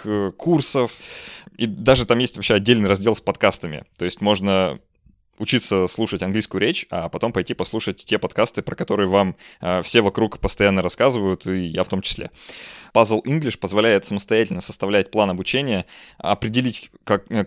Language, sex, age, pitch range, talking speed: Russian, male, 20-39, 95-115 Hz, 150 wpm